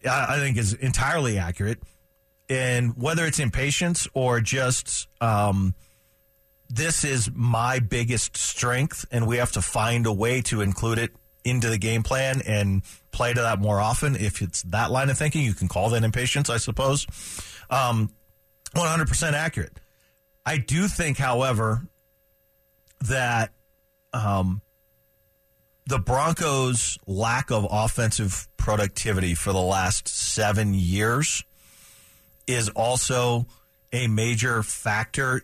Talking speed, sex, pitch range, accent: 130 wpm, male, 100-130 Hz, American